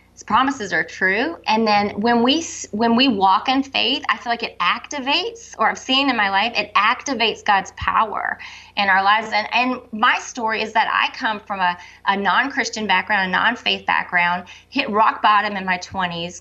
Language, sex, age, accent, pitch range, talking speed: English, female, 30-49, American, 190-235 Hz, 190 wpm